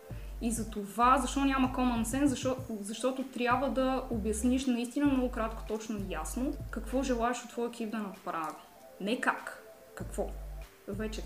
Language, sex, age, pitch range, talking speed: Bulgarian, female, 20-39, 215-270 Hz, 155 wpm